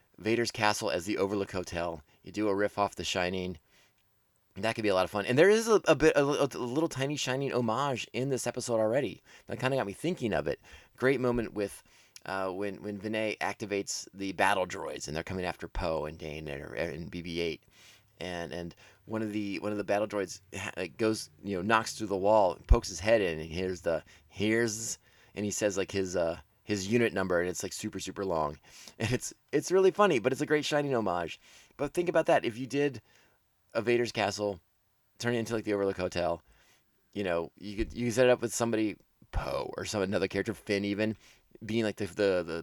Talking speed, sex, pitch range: 220 wpm, male, 95-120 Hz